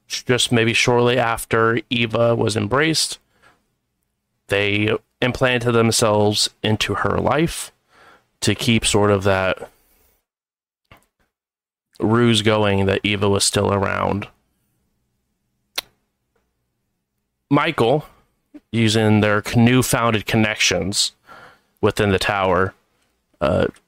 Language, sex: English, male